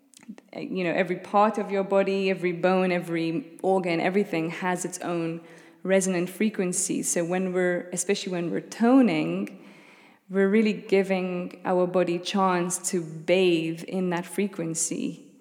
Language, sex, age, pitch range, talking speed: English, female, 20-39, 170-190 Hz, 140 wpm